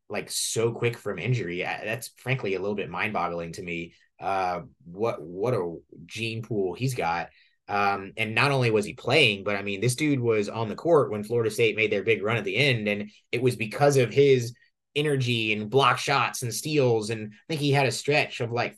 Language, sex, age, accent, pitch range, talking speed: English, male, 20-39, American, 115-145 Hz, 220 wpm